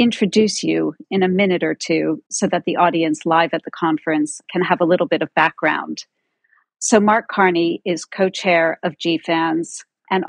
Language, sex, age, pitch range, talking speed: English, female, 40-59, 160-195 Hz, 180 wpm